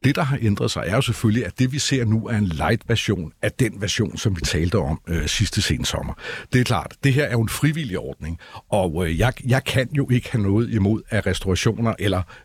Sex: male